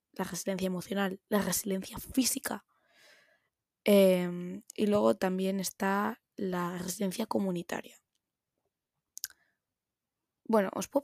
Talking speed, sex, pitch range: 90 wpm, female, 195-235 Hz